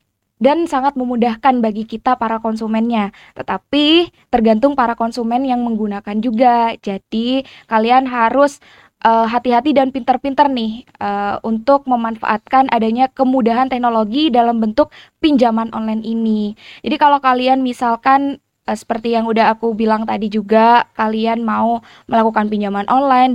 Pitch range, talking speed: 220-260 Hz, 130 wpm